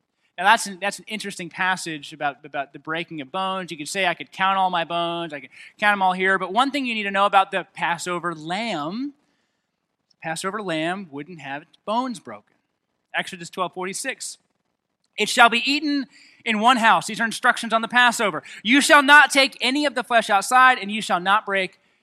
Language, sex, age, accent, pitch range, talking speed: English, male, 20-39, American, 160-215 Hz, 210 wpm